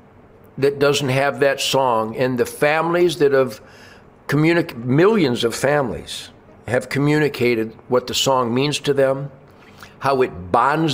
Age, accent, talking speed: 60-79, American, 135 wpm